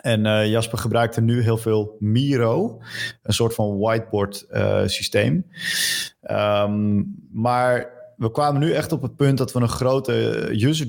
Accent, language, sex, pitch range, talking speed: Dutch, Dutch, male, 105-135 Hz, 150 wpm